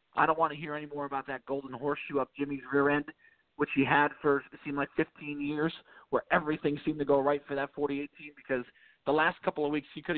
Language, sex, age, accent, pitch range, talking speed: English, male, 40-59, American, 135-165 Hz, 250 wpm